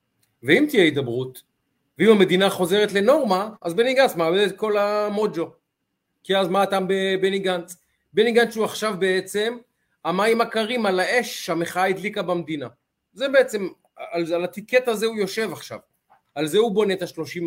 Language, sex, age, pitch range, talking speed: Hebrew, male, 40-59, 155-215 Hz, 160 wpm